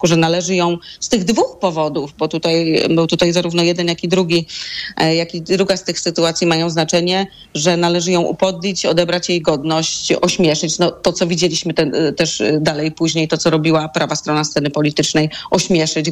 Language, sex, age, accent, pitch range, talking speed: Polish, female, 30-49, native, 155-180 Hz, 180 wpm